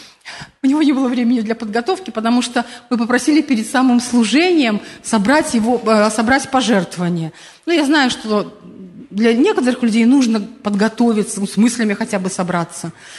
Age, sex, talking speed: 40-59, female, 145 wpm